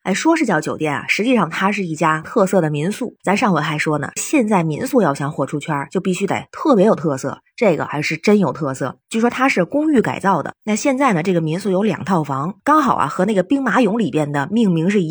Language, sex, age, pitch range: Chinese, female, 20-39, 165-235 Hz